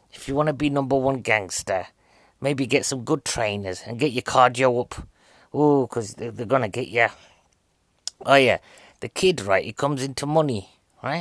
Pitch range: 120-155 Hz